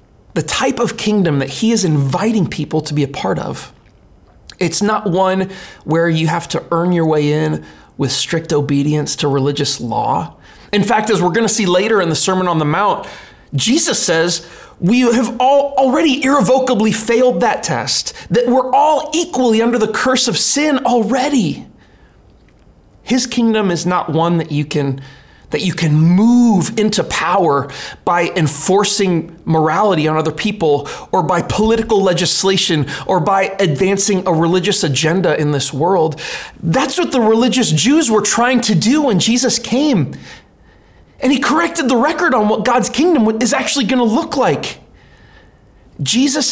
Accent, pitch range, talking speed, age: American, 160-235 Hz, 160 wpm, 30-49